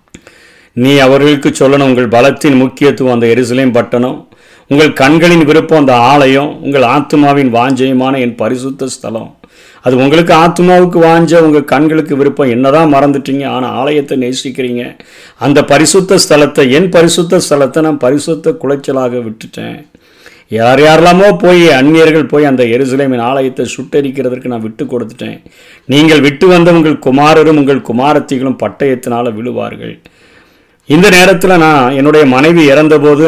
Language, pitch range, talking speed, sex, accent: Tamil, 125-150 Hz, 125 wpm, male, native